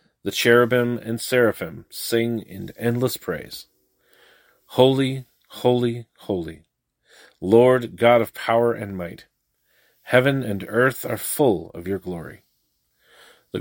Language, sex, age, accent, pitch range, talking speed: English, male, 40-59, American, 105-125 Hz, 115 wpm